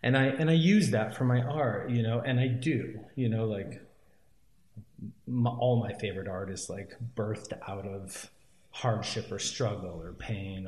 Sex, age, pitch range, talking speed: male, 30-49, 95-120 Hz, 180 wpm